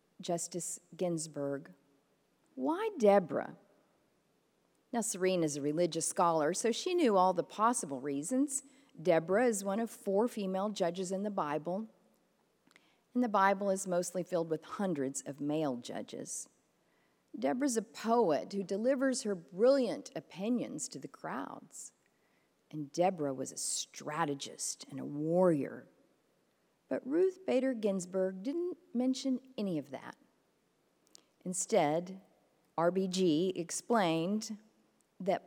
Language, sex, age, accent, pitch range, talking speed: English, female, 40-59, American, 155-220 Hz, 120 wpm